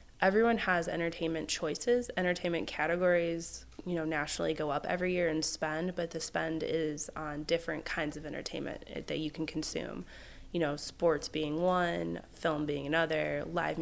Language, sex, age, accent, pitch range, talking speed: English, female, 20-39, American, 155-175 Hz, 160 wpm